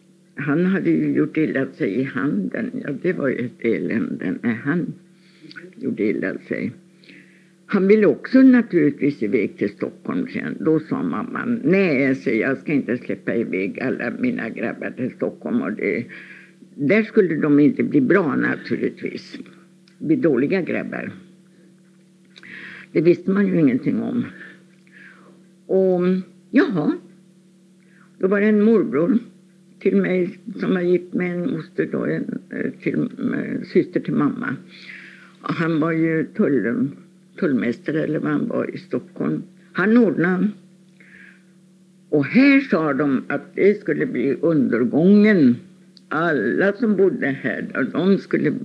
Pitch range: 175-200 Hz